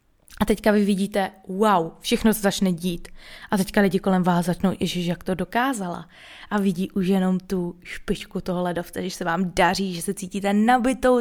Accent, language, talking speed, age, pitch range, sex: native, Czech, 185 wpm, 20-39, 185-220 Hz, female